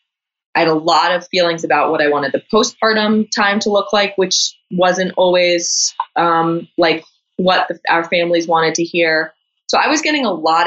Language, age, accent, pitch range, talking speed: English, 20-39, American, 160-210 Hz, 190 wpm